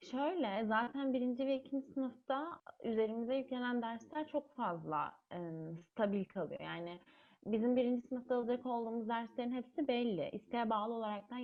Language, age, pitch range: Turkish, 30-49, 205-250 Hz